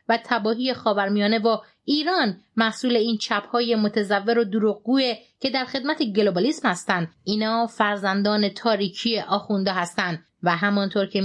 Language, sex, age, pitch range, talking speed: English, female, 30-49, 205-260 Hz, 135 wpm